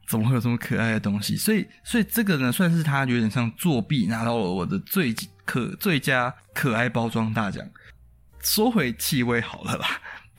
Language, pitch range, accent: Chinese, 115-160 Hz, native